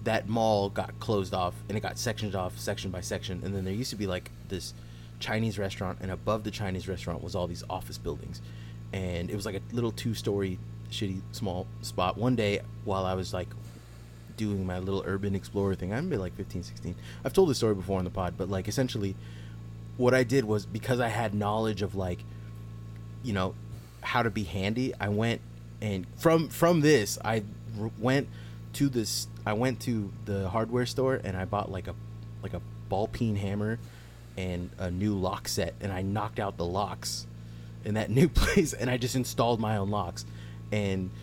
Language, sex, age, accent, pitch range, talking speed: English, male, 30-49, American, 95-115 Hz, 200 wpm